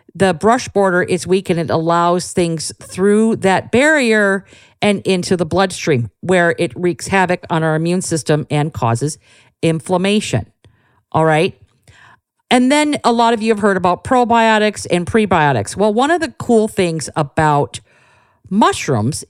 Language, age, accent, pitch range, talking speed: English, 50-69, American, 145-200 Hz, 150 wpm